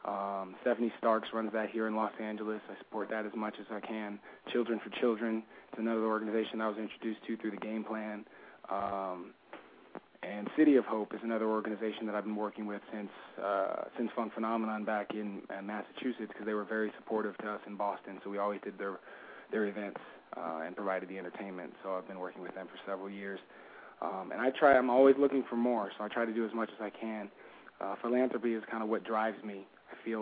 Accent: American